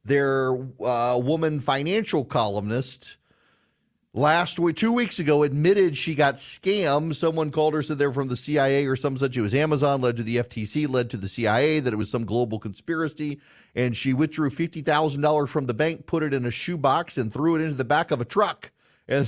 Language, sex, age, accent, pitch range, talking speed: English, male, 40-59, American, 145-230 Hz, 195 wpm